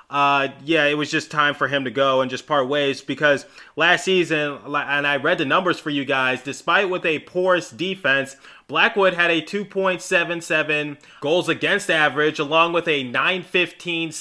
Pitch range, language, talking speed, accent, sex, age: 145-170 Hz, English, 170 wpm, American, male, 20-39